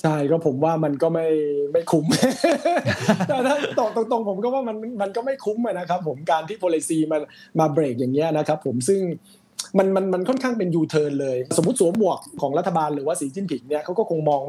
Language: Thai